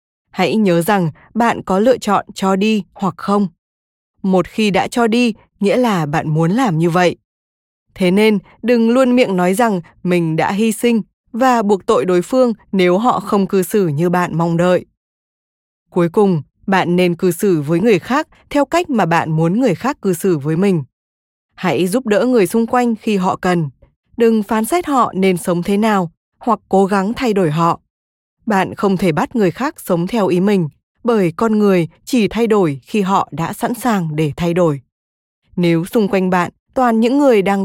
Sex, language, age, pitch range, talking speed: female, Vietnamese, 20-39, 170-225 Hz, 195 wpm